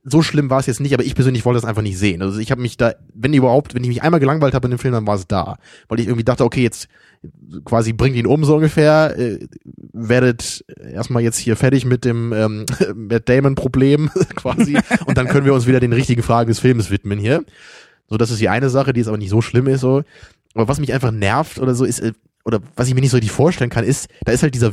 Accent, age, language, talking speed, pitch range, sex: German, 20-39, German, 260 wpm, 115-150 Hz, male